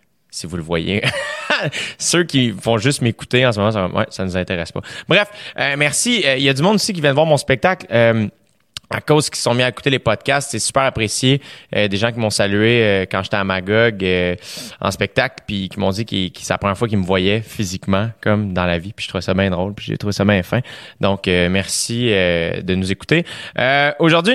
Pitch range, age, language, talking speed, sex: 105-135 Hz, 30-49, French, 245 wpm, male